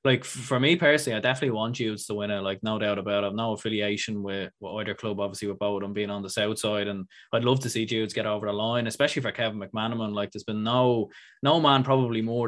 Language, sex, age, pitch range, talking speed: English, male, 20-39, 105-125 Hz, 260 wpm